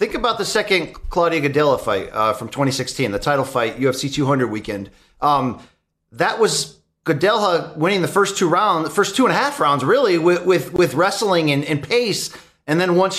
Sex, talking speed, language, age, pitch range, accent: male, 195 wpm, English, 30-49, 155-215 Hz, American